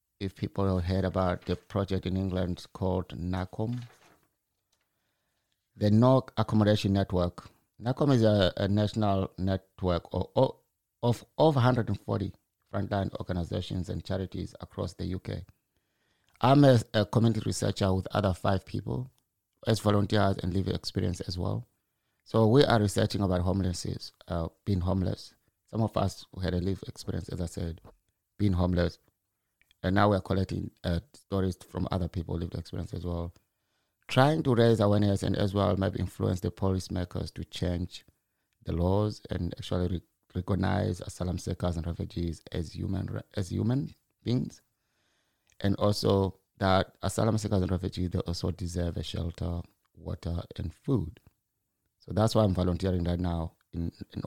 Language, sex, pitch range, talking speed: English, male, 90-105 Hz, 150 wpm